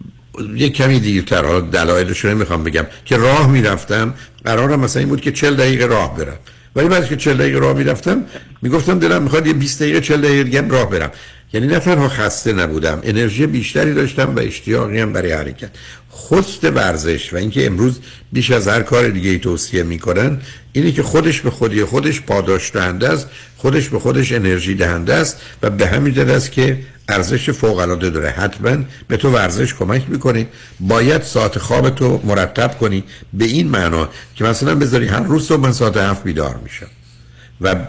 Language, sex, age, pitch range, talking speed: Persian, male, 60-79, 95-130 Hz, 180 wpm